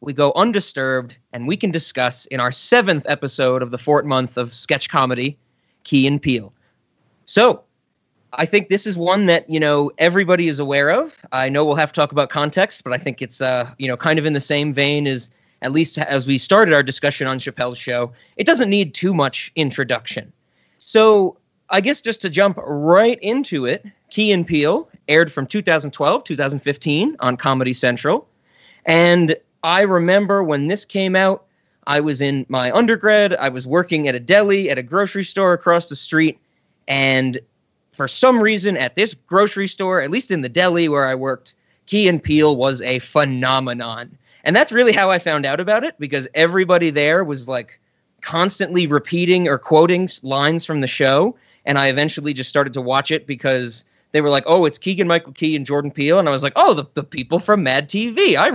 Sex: male